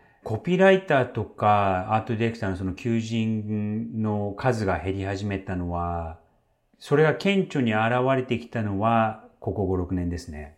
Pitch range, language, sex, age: 90-125 Hz, Japanese, male, 30-49